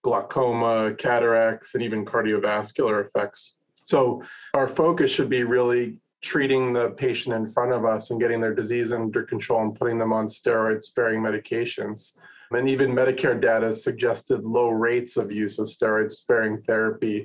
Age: 30-49